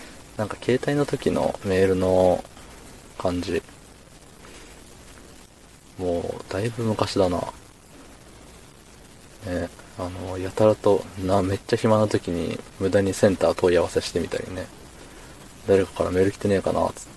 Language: Japanese